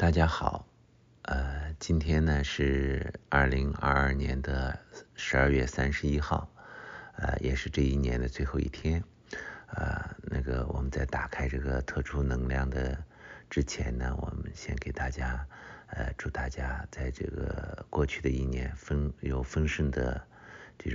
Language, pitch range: English, 65-75 Hz